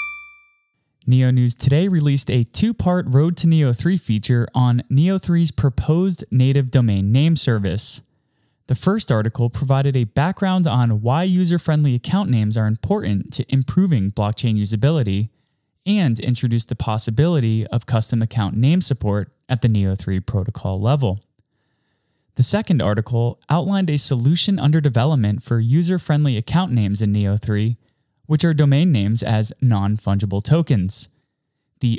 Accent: American